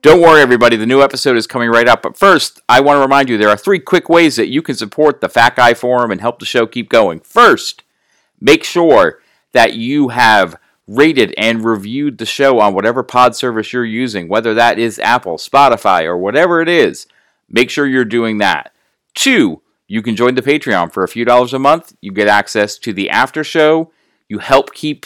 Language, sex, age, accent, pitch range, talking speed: English, male, 40-59, American, 110-145 Hz, 215 wpm